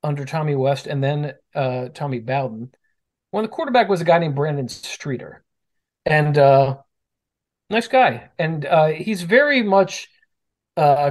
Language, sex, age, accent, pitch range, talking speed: English, male, 40-59, American, 130-160 Hz, 150 wpm